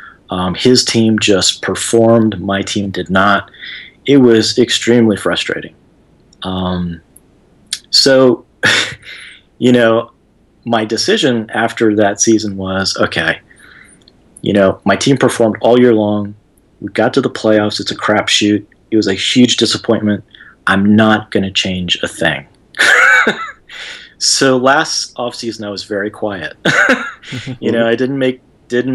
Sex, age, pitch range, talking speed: male, 30-49, 100-115 Hz, 135 wpm